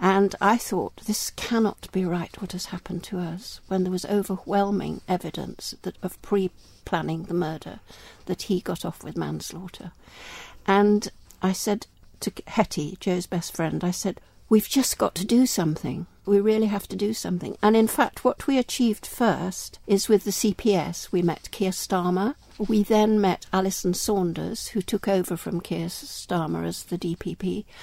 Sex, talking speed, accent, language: female, 170 wpm, British, English